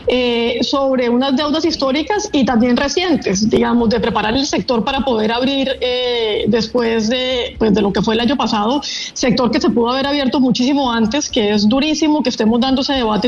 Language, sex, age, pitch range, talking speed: Spanish, female, 30-49, 240-285 Hz, 195 wpm